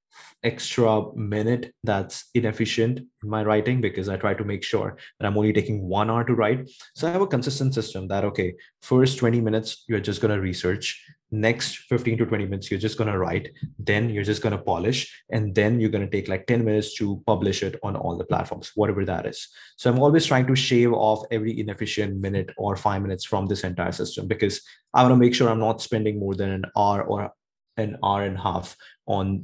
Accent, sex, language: Indian, male, English